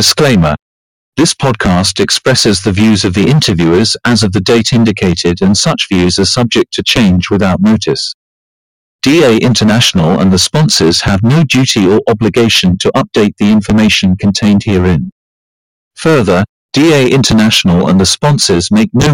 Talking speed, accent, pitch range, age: 145 wpm, British, 100-130 Hz, 40-59